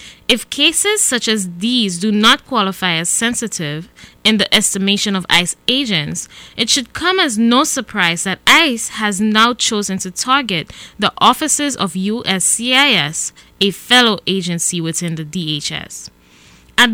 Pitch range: 180-245 Hz